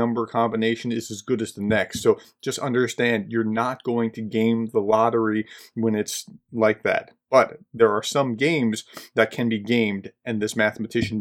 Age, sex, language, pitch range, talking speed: 30-49, male, English, 115-135 Hz, 180 wpm